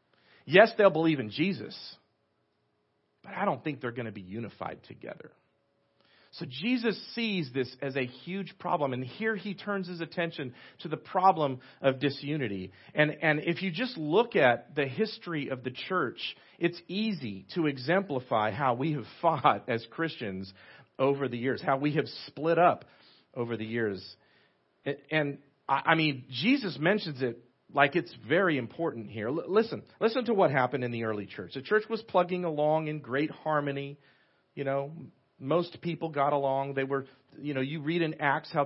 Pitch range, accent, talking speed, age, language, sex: 135-175 Hz, American, 175 wpm, 40-59, English, male